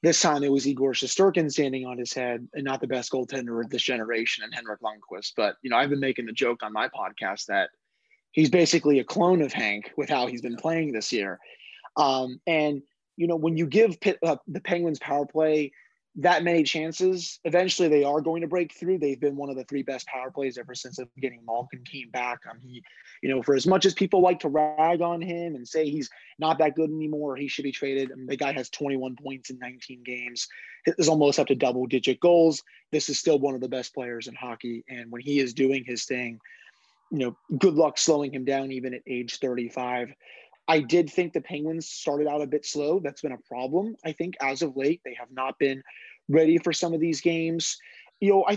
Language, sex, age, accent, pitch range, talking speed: English, male, 20-39, American, 130-165 Hz, 230 wpm